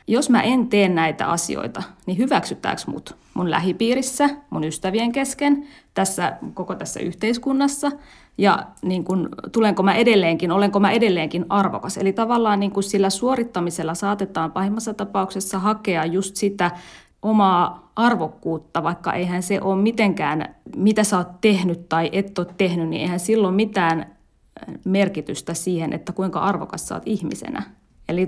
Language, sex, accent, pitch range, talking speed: Finnish, female, native, 180-225 Hz, 140 wpm